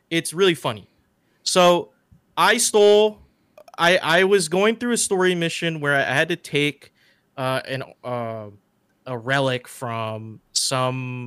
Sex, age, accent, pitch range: male, 20-39, American, 125-165 Hz